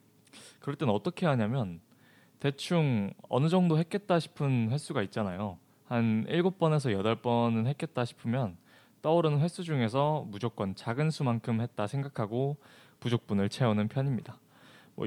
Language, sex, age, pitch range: Korean, male, 20-39, 110-160 Hz